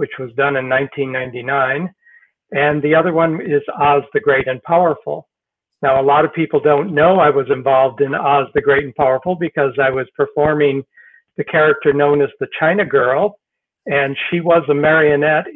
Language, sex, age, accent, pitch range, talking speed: English, male, 60-79, American, 140-170 Hz, 180 wpm